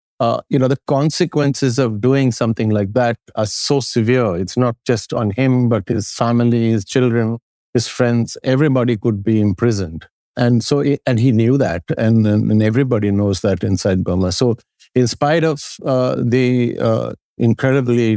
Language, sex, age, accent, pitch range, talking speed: English, male, 50-69, Indian, 100-125 Hz, 170 wpm